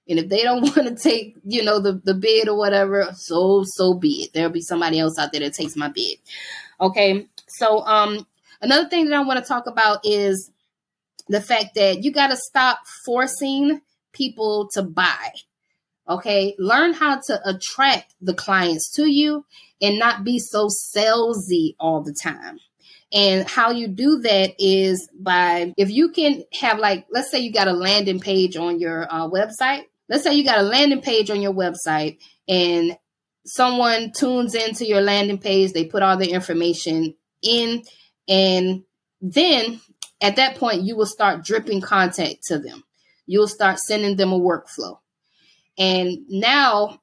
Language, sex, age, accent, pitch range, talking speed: English, female, 20-39, American, 185-240 Hz, 170 wpm